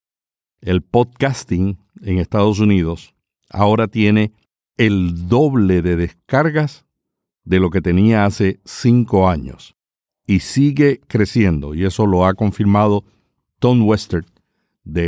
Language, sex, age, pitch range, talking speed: Spanish, male, 60-79, 95-130 Hz, 115 wpm